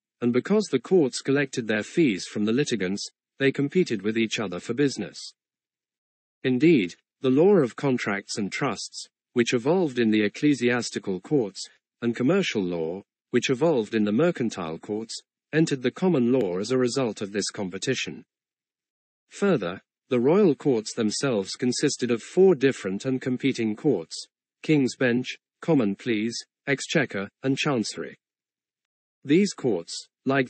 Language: English